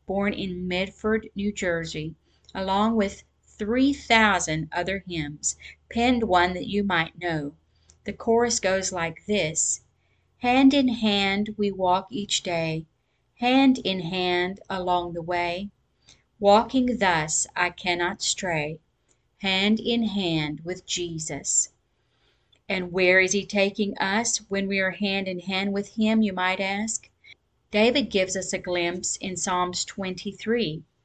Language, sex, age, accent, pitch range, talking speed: English, female, 40-59, American, 175-210 Hz, 135 wpm